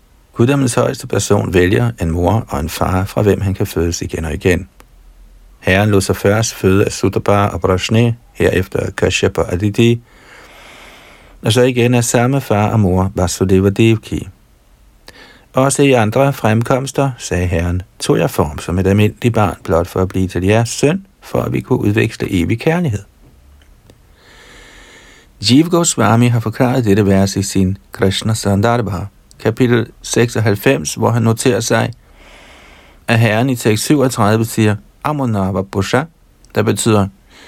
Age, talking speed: 60-79, 145 wpm